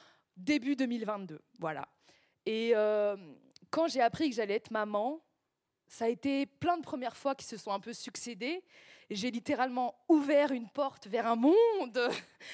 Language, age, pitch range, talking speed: French, 20-39, 235-330 Hz, 160 wpm